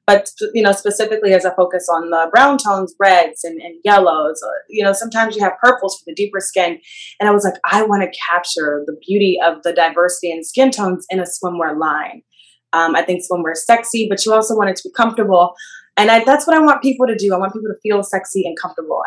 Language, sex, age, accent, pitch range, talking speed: English, female, 20-39, American, 170-205 Hz, 240 wpm